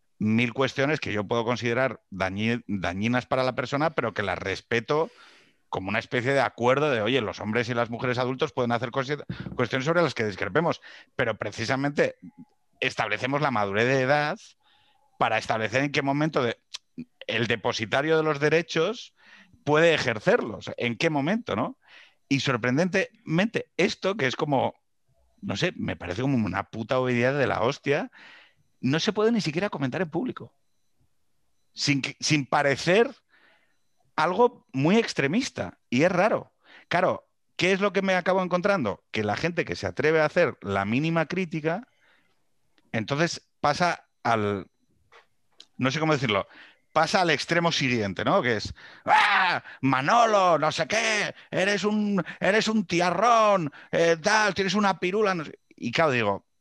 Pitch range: 120-175 Hz